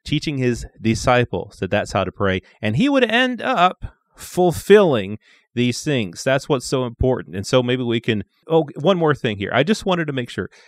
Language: English